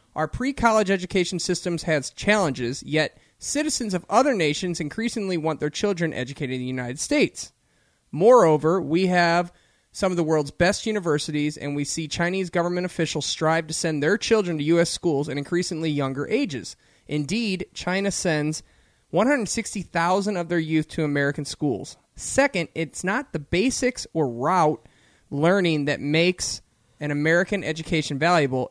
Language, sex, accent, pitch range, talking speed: English, male, American, 145-180 Hz, 150 wpm